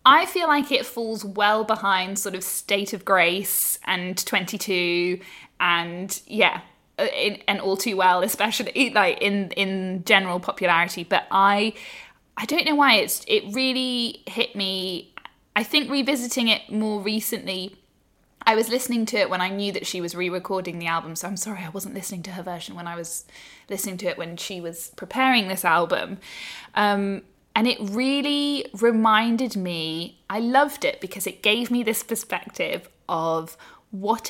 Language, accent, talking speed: English, British, 165 wpm